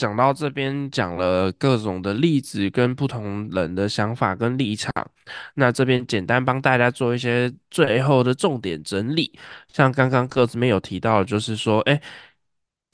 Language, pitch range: Chinese, 110-140 Hz